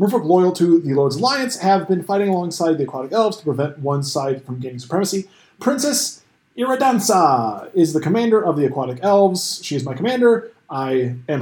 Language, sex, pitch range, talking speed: English, male, 145-210 Hz, 185 wpm